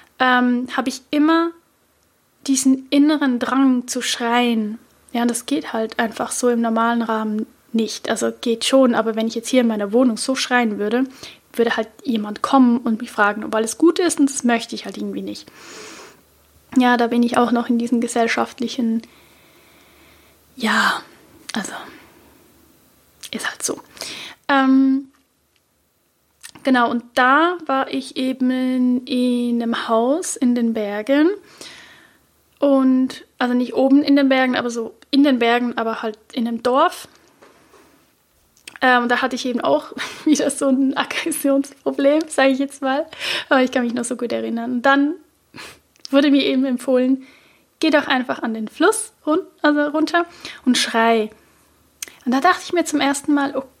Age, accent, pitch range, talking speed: 10-29, German, 235-280 Hz, 155 wpm